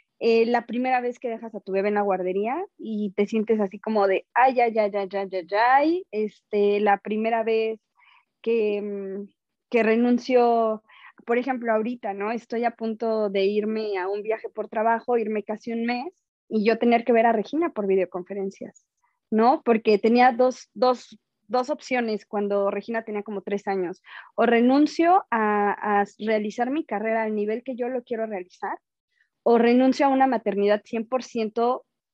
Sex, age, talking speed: female, 20-39, 170 wpm